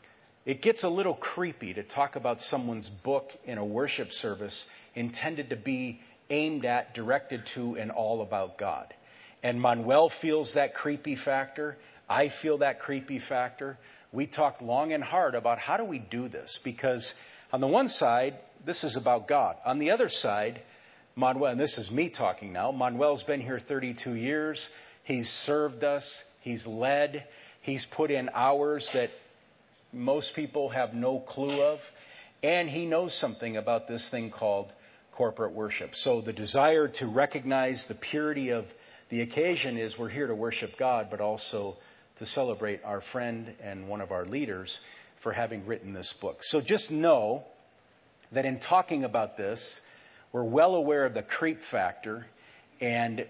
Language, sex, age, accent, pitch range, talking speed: English, male, 50-69, American, 115-145 Hz, 165 wpm